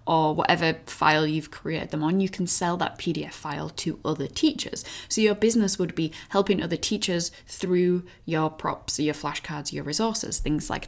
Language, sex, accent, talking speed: English, female, British, 180 wpm